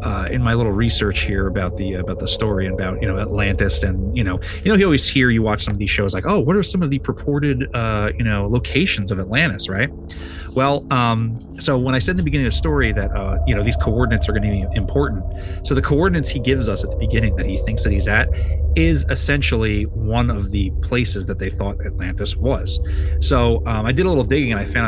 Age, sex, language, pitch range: 20-39, male, English, 85-115 Hz